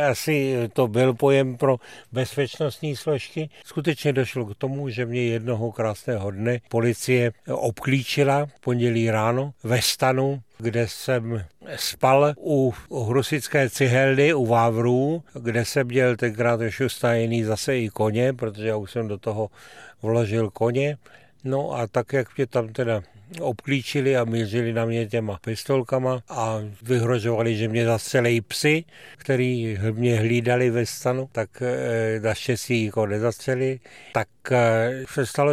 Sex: male